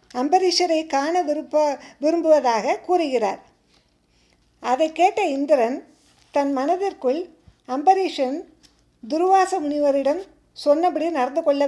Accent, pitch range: native, 265-355 Hz